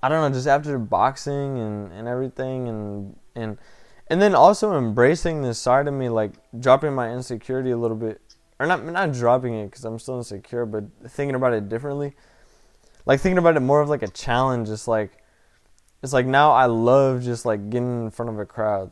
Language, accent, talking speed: English, American, 205 wpm